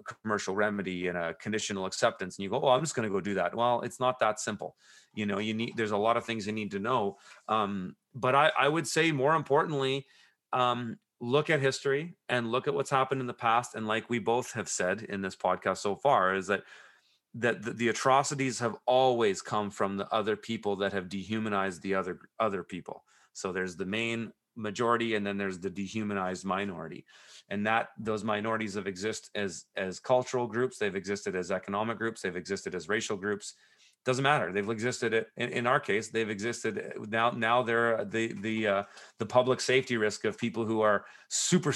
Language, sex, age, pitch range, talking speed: English, male, 30-49, 100-125 Hz, 205 wpm